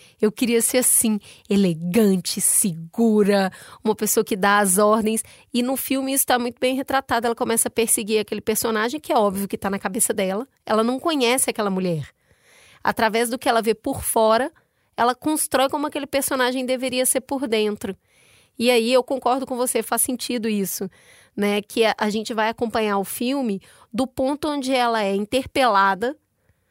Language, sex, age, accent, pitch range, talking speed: Portuguese, female, 20-39, Brazilian, 215-255 Hz, 175 wpm